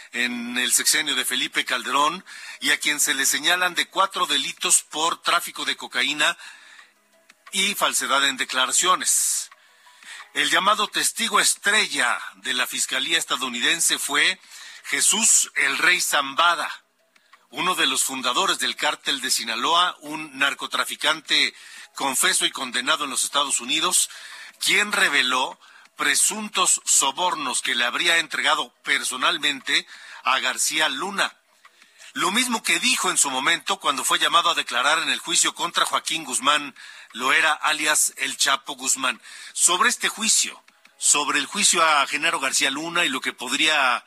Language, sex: Spanish, male